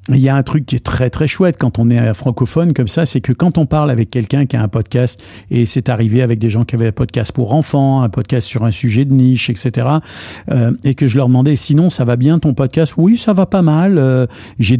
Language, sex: French, male